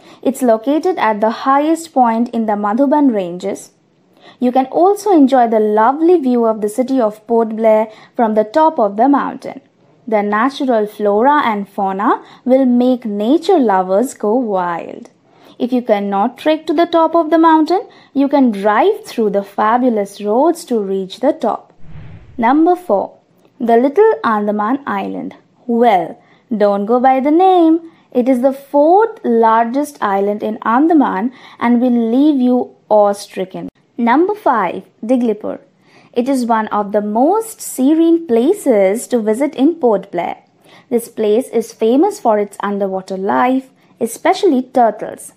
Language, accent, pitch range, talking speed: English, Indian, 220-295 Hz, 150 wpm